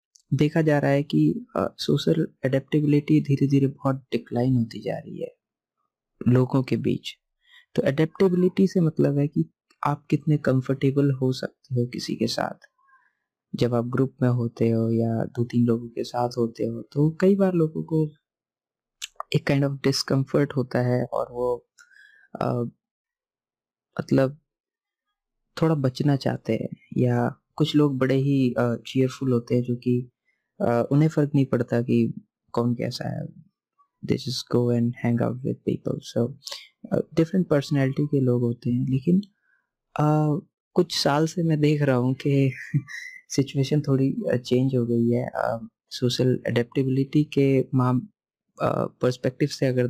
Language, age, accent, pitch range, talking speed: Hindi, 30-49, native, 120-155 Hz, 150 wpm